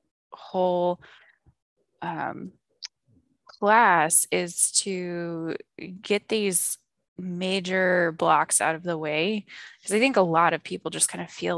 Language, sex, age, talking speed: English, female, 20-39, 125 wpm